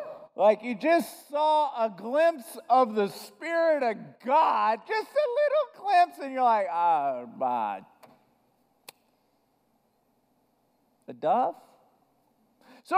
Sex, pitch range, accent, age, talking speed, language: male, 220-305 Hz, American, 50-69, 105 wpm, English